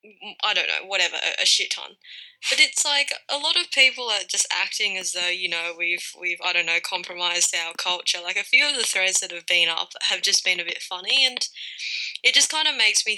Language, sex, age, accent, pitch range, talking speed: English, female, 10-29, Australian, 185-235 Hz, 235 wpm